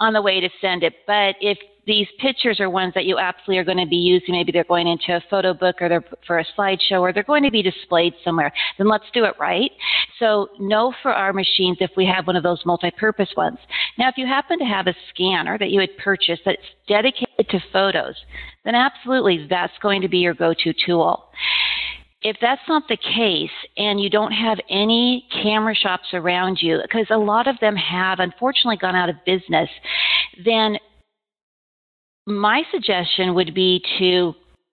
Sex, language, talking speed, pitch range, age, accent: female, English, 195 wpm, 180-215 Hz, 40-59, American